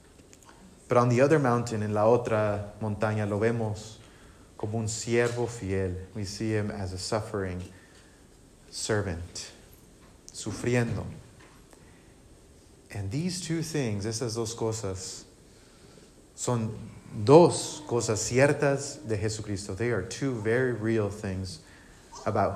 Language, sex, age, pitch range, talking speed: English, male, 30-49, 105-130 Hz, 115 wpm